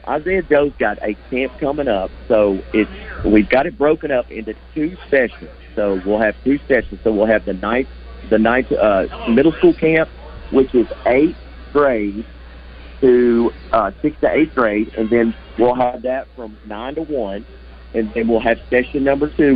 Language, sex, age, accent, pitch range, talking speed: English, male, 50-69, American, 105-130 Hz, 180 wpm